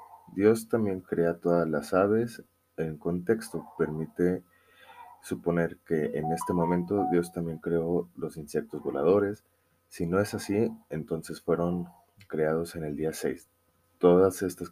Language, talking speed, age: Spanish, 135 wpm, 30-49